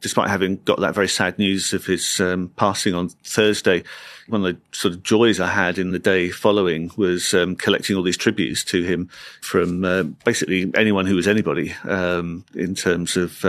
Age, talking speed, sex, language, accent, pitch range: 40-59, 195 wpm, male, English, British, 90-100 Hz